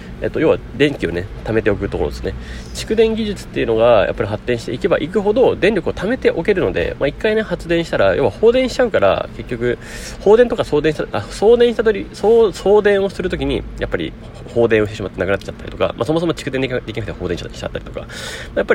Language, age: Japanese, 30-49